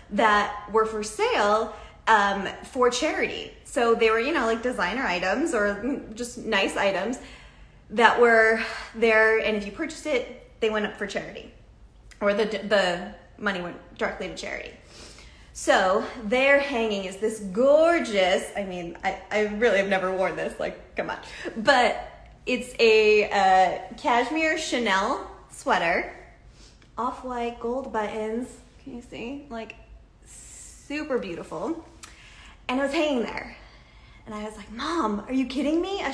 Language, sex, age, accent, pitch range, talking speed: English, female, 20-39, American, 205-260 Hz, 150 wpm